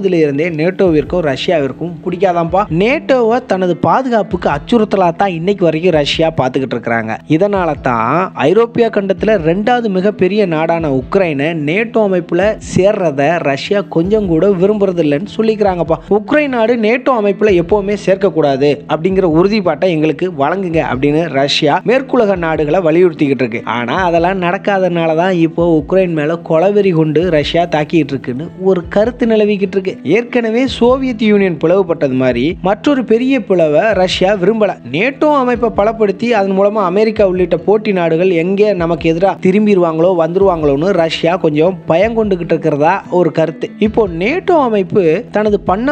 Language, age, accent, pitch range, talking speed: Tamil, 20-39, native, 165-210 Hz, 35 wpm